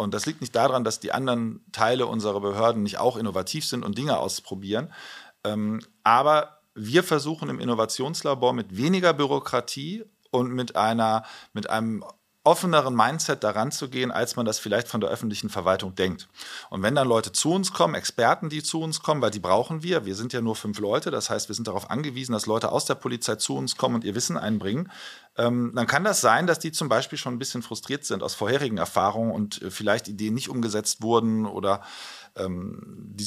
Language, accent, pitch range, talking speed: German, German, 105-135 Hz, 200 wpm